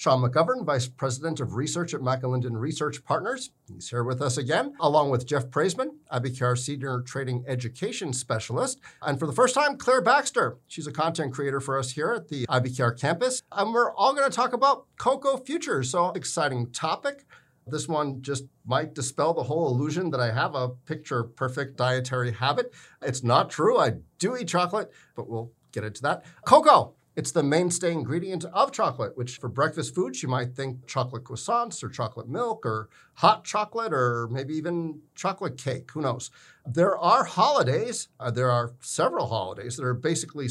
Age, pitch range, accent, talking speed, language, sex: 50-69, 125-170 Hz, American, 180 wpm, English, male